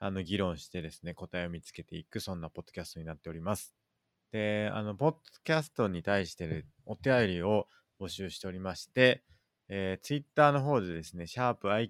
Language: Japanese